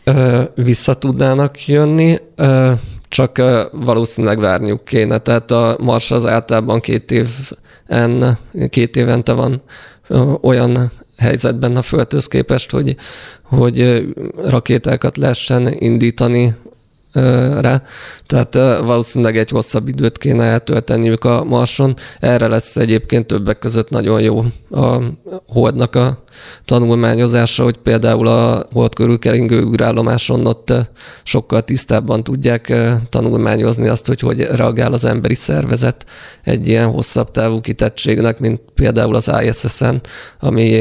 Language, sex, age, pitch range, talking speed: Hungarian, male, 20-39, 115-125 Hz, 115 wpm